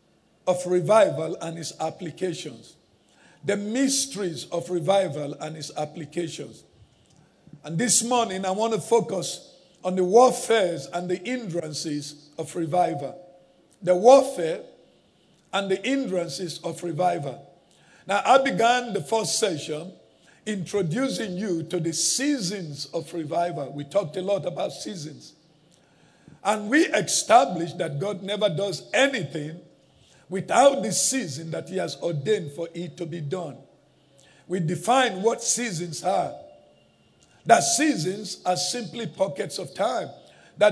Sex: male